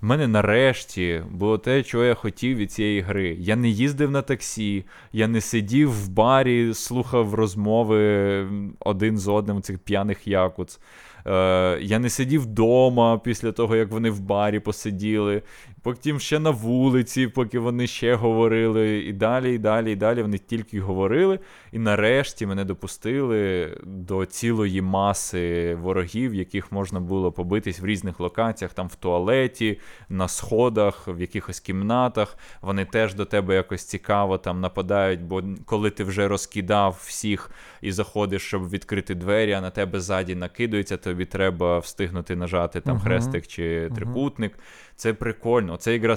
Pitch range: 95-115 Hz